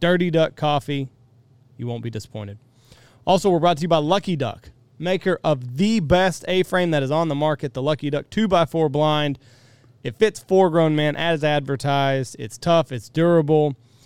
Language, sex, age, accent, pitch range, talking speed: English, male, 30-49, American, 125-160 Hz, 170 wpm